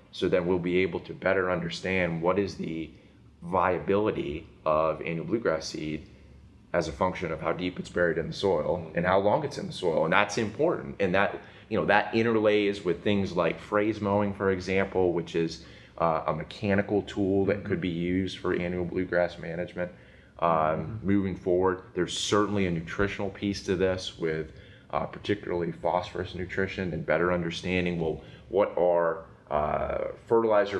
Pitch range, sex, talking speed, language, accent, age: 85-100 Hz, male, 170 wpm, English, American, 20-39